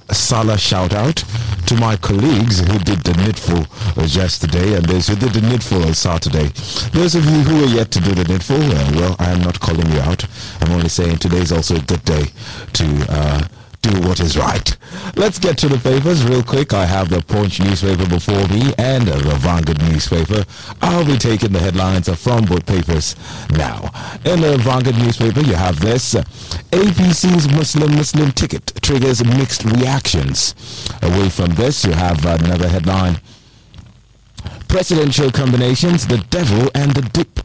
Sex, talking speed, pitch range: male, 175 wpm, 90-130 Hz